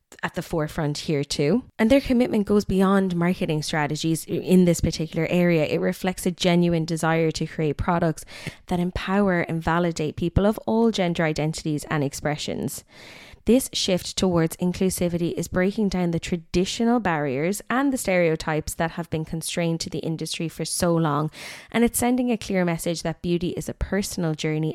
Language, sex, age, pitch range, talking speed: English, female, 20-39, 160-185 Hz, 170 wpm